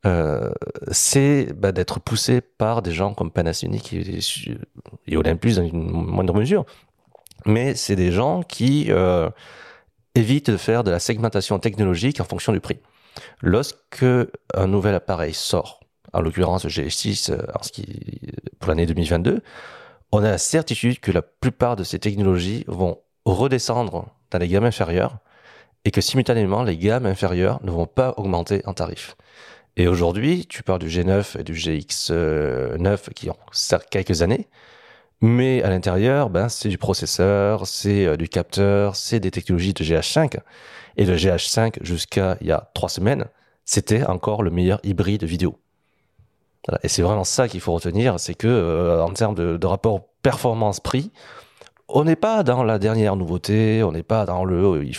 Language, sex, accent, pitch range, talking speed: French, male, French, 90-115 Hz, 160 wpm